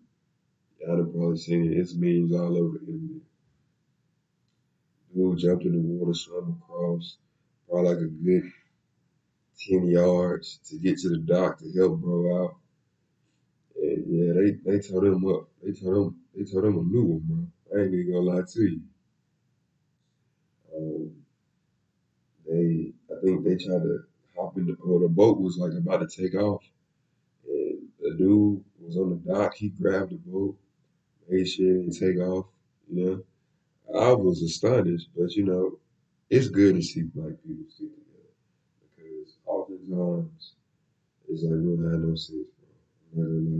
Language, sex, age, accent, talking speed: English, male, 20-39, American, 165 wpm